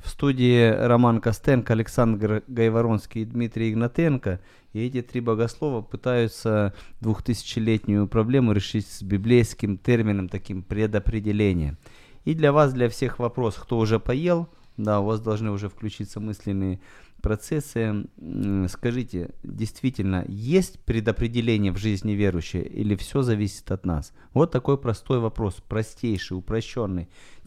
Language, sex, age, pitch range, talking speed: Ukrainian, male, 30-49, 100-120 Hz, 125 wpm